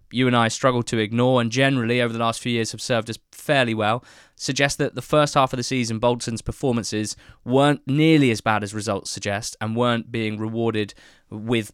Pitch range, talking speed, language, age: 110-130 Hz, 205 wpm, English, 20-39